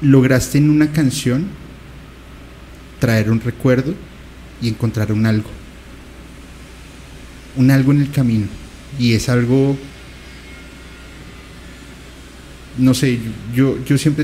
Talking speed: 100 wpm